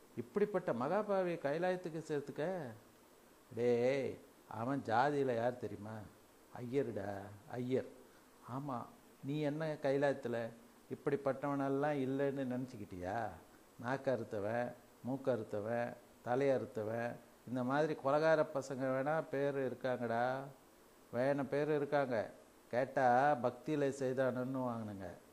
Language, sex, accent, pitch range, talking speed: Tamil, male, native, 120-145 Hz, 85 wpm